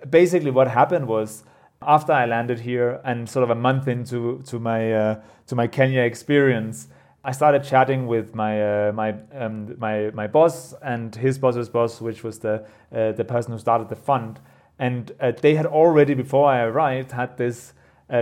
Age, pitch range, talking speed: 30-49, 115-135 Hz, 190 wpm